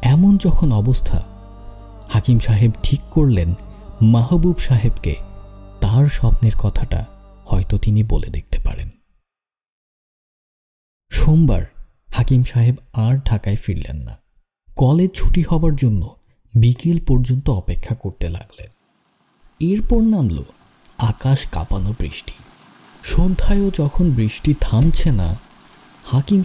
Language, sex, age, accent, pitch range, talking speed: Bengali, male, 50-69, native, 100-135 Hz, 100 wpm